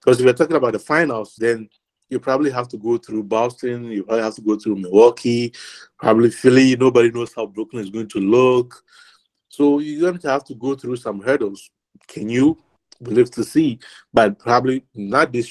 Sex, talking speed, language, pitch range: male, 195 wpm, English, 105-130 Hz